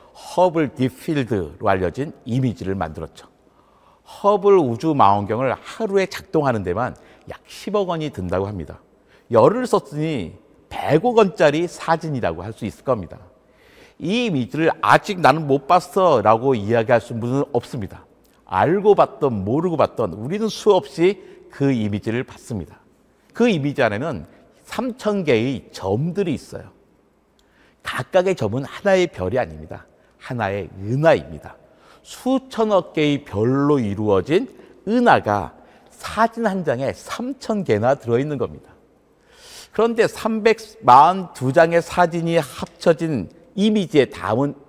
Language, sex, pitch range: Korean, male, 120-200 Hz